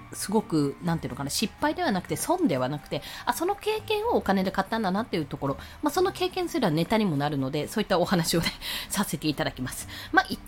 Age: 20-39